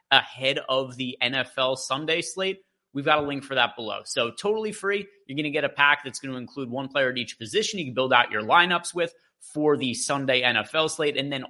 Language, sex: English, male